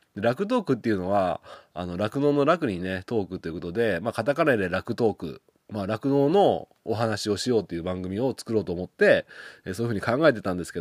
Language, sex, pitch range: Japanese, male, 90-125 Hz